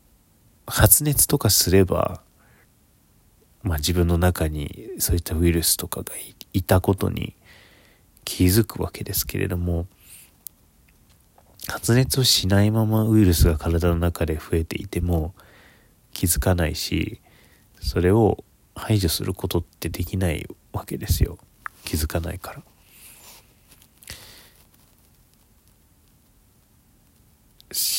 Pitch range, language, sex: 80-105 Hz, Japanese, male